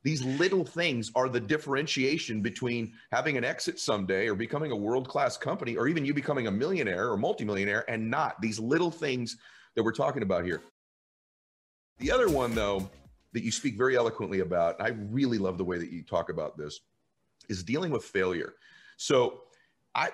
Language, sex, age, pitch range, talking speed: English, male, 40-59, 95-145 Hz, 180 wpm